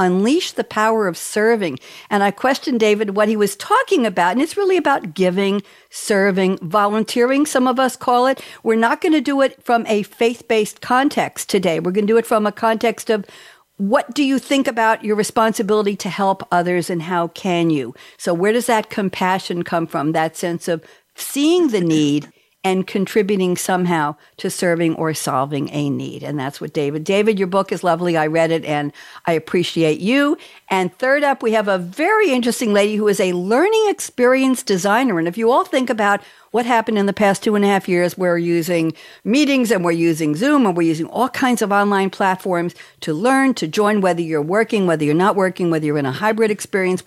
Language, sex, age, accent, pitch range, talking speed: English, female, 60-79, American, 175-230 Hz, 205 wpm